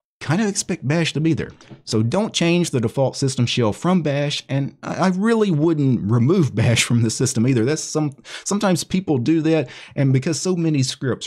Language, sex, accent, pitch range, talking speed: English, male, American, 105-145 Hz, 195 wpm